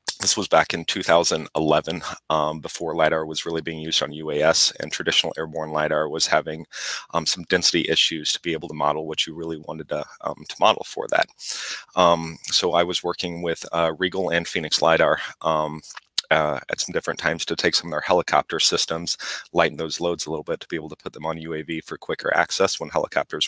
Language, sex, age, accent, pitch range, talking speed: English, male, 30-49, American, 75-85 Hz, 210 wpm